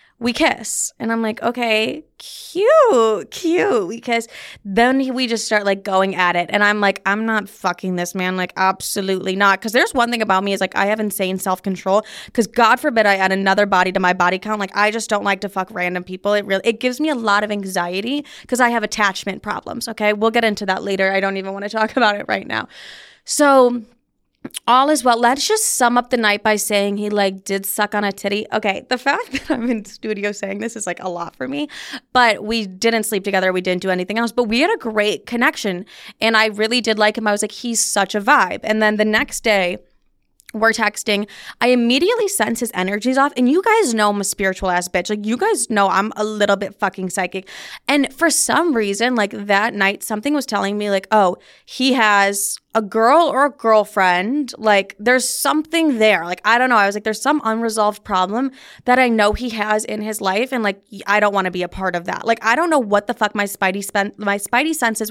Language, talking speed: English, 235 wpm